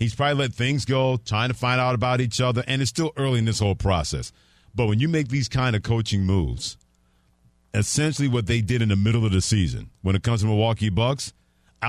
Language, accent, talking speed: English, American, 230 wpm